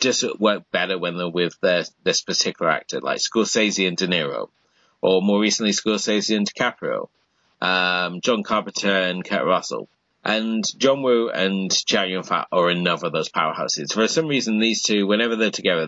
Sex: male